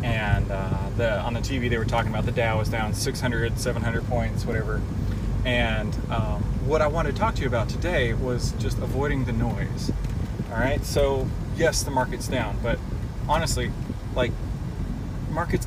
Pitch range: 110-125 Hz